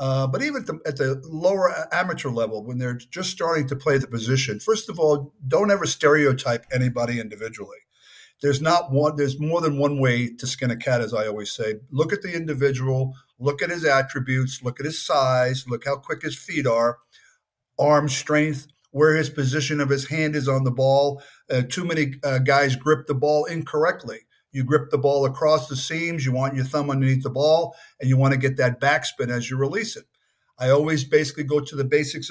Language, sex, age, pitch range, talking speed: English, male, 50-69, 130-155 Hz, 205 wpm